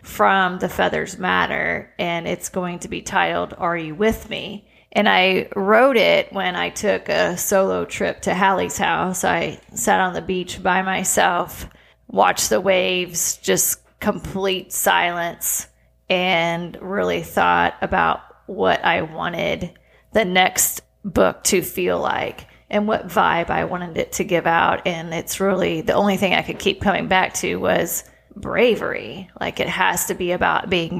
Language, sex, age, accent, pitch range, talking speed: English, female, 30-49, American, 180-200 Hz, 160 wpm